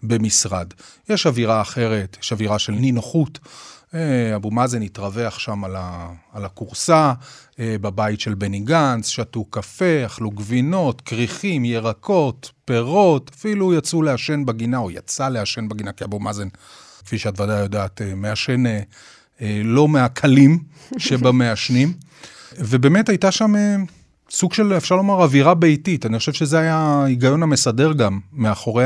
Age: 30-49